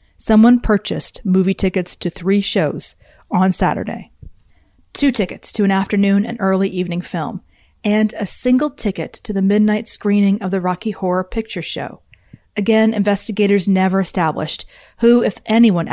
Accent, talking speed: American, 145 wpm